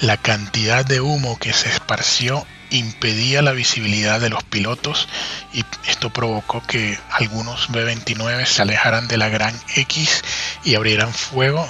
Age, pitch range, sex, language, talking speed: 30-49, 110-130 Hz, male, Spanish, 145 wpm